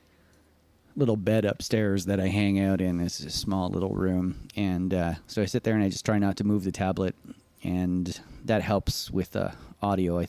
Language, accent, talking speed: English, American, 210 wpm